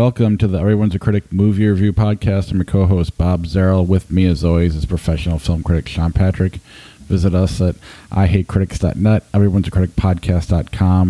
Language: English